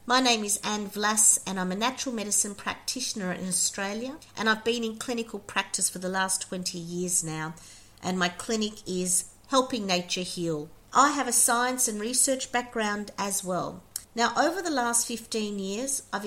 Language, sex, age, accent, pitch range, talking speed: English, female, 50-69, Australian, 175-235 Hz, 175 wpm